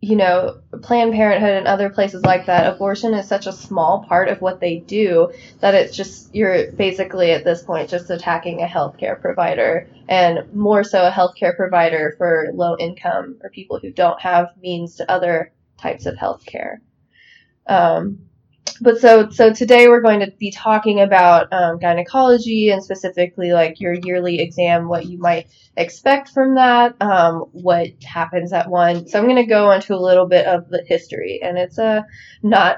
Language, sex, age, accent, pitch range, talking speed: English, female, 10-29, American, 175-220 Hz, 180 wpm